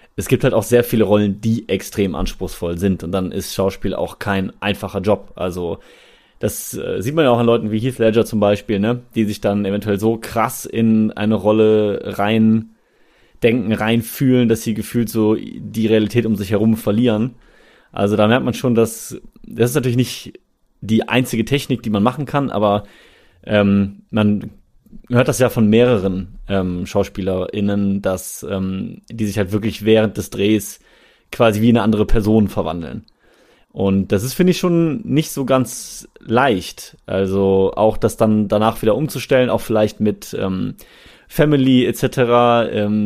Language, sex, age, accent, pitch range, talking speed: German, male, 30-49, German, 100-120 Hz, 165 wpm